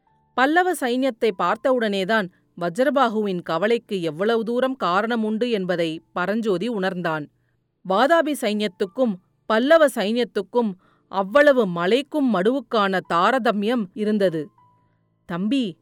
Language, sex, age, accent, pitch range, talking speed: Tamil, female, 40-59, native, 180-255 Hz, 80 wpm